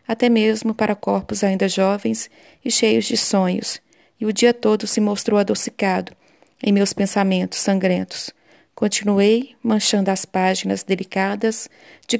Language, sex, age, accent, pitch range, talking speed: Portuguese, female, 40-59, Brazilian, 190-225 Hz, 135 wpm